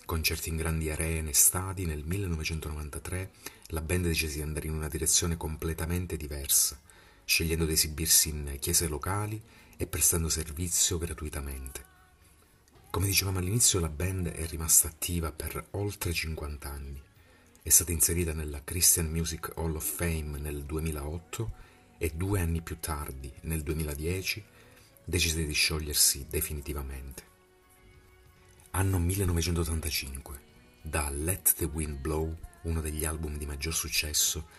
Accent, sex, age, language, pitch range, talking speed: native, male, 40-59, Italian, 80-90 Hz, 130 wpm